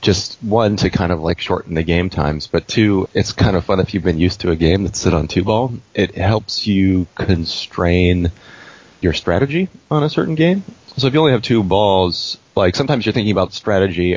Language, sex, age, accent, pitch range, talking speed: English, male, 30-49, American, 85-100 Hz, 210 wpm